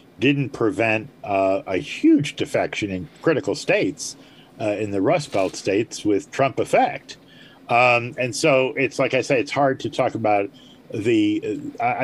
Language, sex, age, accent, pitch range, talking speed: English, male, 40-59, American, 110-145 Hz, 160 wpm